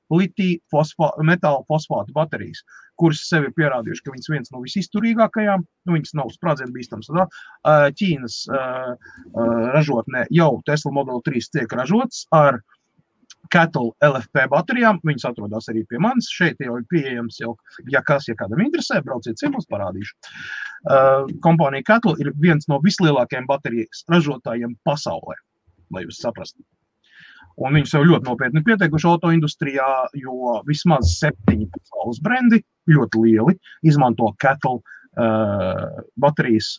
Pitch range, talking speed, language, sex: 115-165 Hz, 135 wpm, English, male